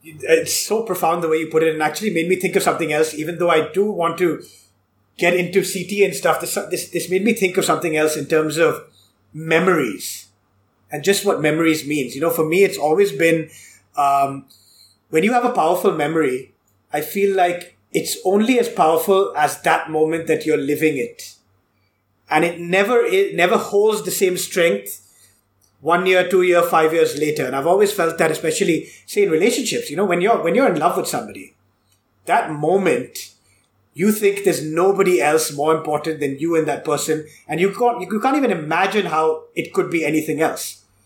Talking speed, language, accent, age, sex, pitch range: 195 wpm, English, Indian, 30-49, male, 150-195 Hz